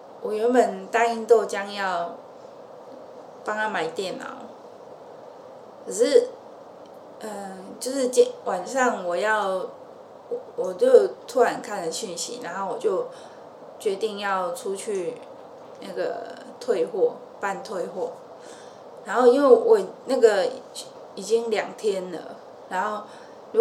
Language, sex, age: Chinese, female, 20-39